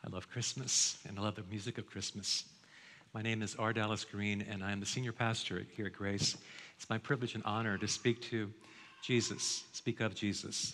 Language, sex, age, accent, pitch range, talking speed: English, male, 50-69, American, 105-125 Hz, 205 wpm